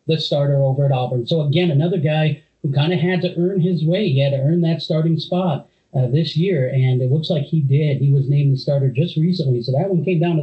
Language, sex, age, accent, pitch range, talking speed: English, male, 30-49, American, 135-160 Hz, 265 wpm